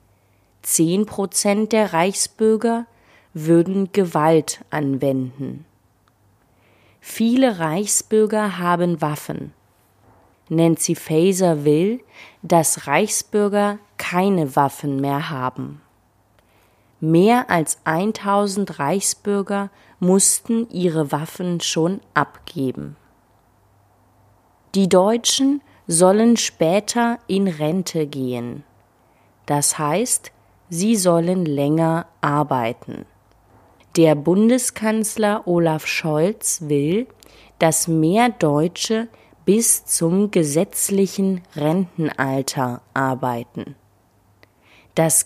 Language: German